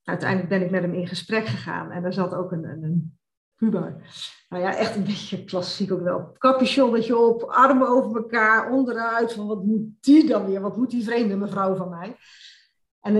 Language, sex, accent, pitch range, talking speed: Dutch, female, Dutch, 185-225 Hz, 190 wpm